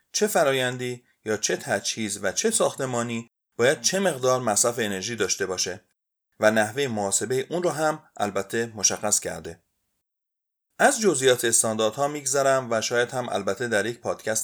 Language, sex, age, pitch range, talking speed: Persian, male, 30-49, 105-135 Hz, 145 wpm